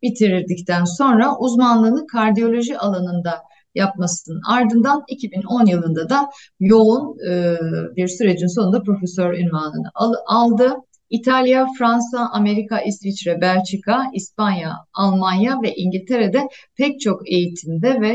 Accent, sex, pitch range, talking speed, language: native, female, 190-245 Hz, 100 wpm, Turkish